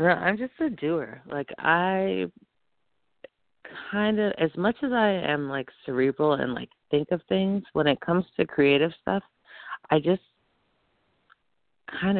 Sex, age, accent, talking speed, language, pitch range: female, 30-49, American, 145 wpm, English, 130-165 Hz